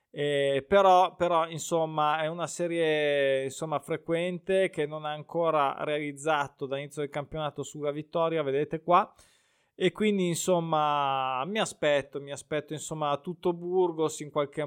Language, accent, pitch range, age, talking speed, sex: Italian, native, 150-190 Hz, 20-39, 135 wpm, male